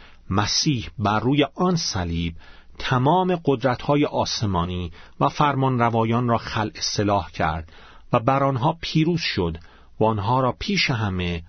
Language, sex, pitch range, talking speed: Persian, male, 100-145 Hz, 125 wpm